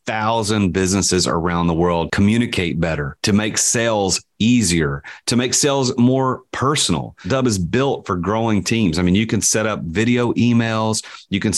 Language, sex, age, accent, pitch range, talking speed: English, male, 30-49, American, 90-120 Hz, 165 wpm